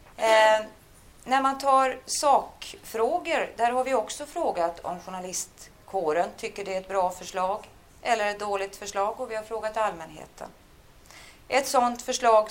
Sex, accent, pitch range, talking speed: female, native, 175-235 Hz, 145 wpm